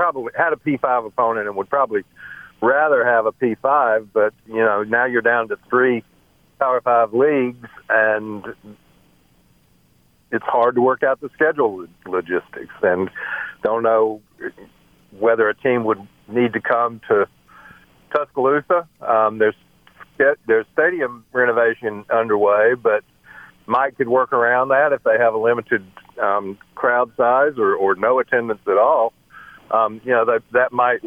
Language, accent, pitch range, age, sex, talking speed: English, American, 105-125 Hz, 50-69, male, 145 wpm